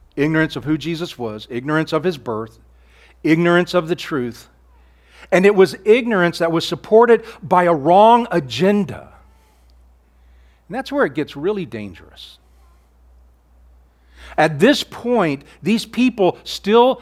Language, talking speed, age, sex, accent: English, 130 wpm, 50-69, male, American